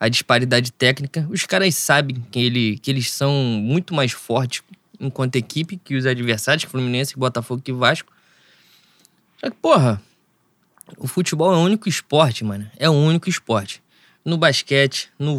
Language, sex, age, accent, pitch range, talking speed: Portuguese, male, 20-39, Brazilian, 130-170 Hz, 155 wpm